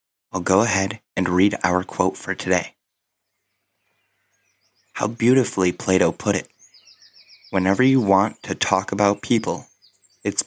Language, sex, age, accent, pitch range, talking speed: English, male, 30-49, American, 95-115 Hz, 125 wpm